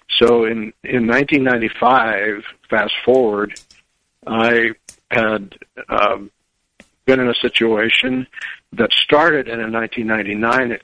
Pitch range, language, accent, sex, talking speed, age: 100-120 Hz, English, American, male, 100 wpm, 60-79